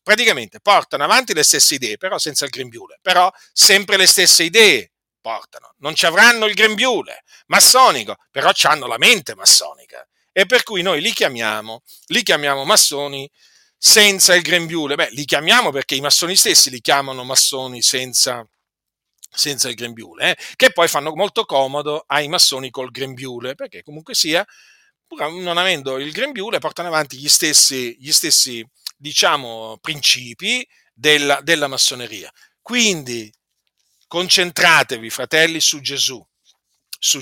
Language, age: Italian, 40-59